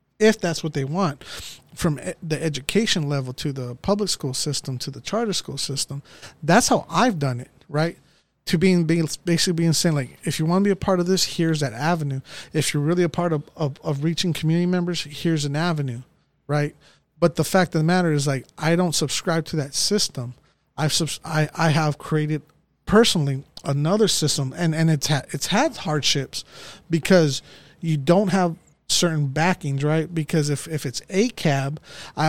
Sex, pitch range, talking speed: male, 145-175 Hz, 195 wpm